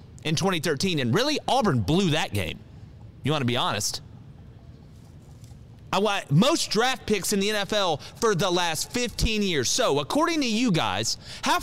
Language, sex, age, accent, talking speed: English, male, 30-49, American, 165 wpm